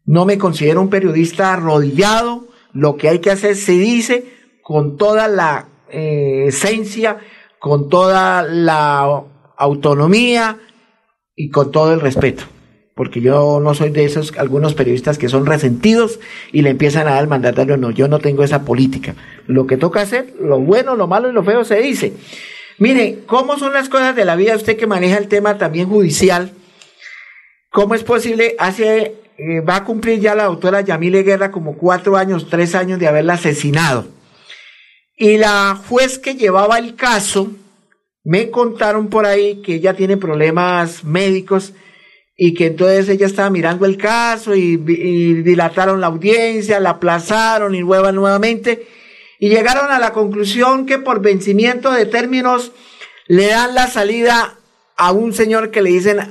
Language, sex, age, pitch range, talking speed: Spanish, male, 50-69, 160-220 Hz, 165 wpm